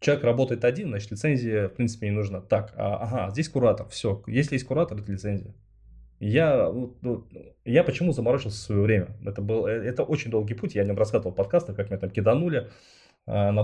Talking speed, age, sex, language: 185 wpm, 20-39, male, Russian